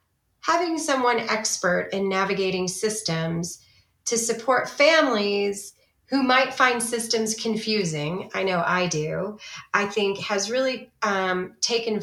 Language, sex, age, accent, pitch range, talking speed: English, female, 30-49, American, 185-235 Hz, 120 wpm